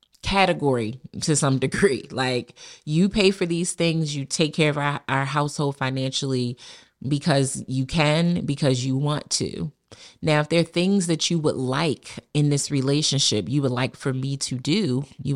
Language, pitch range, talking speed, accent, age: English, 130-165 Hz, 175 wpm, American, 30-49